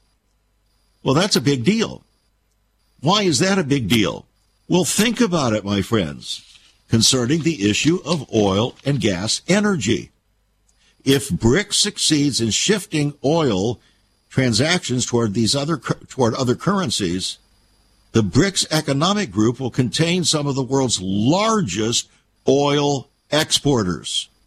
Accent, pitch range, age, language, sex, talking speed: American, 110-145 Hz, 60-79, English, male, 125 wpm